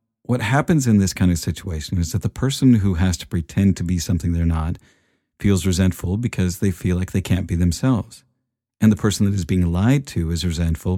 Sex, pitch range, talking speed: male, 85-110 Hz, 220 wpm